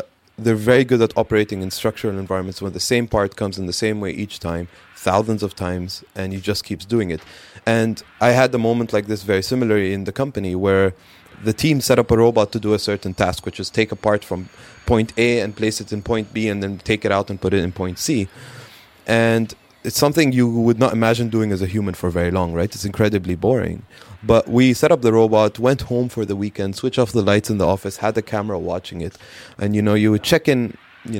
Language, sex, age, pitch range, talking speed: English, male, 20-39, 100-120 Hz, 240 wpm